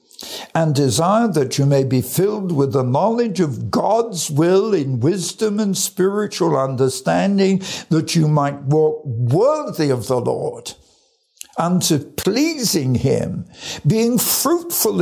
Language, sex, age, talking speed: English, male, 60-79, 125 wpm